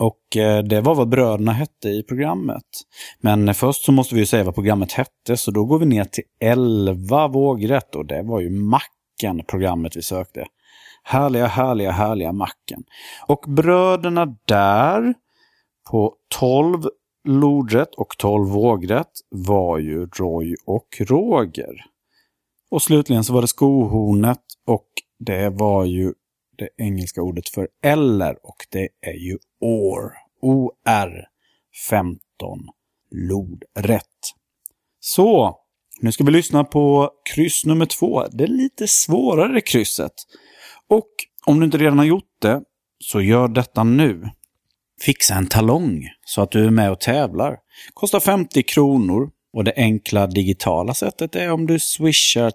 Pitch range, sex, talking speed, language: 100-140 Hz, male, 140 wpm, Swedish